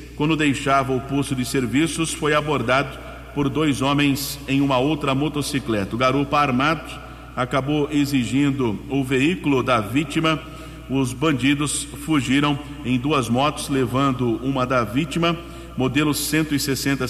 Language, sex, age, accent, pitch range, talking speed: Portuguese, male, 50-69, Brazilian, 130-145 Hz, 125 wpm